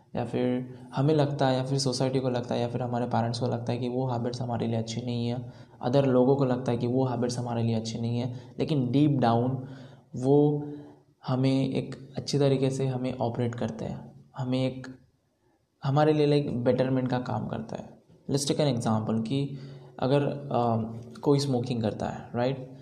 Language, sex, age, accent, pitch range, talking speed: Hindi, male, 20-39, native, 120-135 Hz, 190 wpm